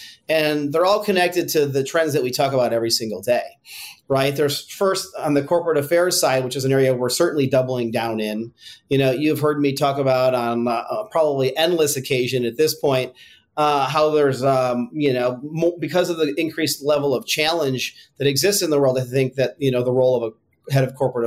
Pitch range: 125-155 Hz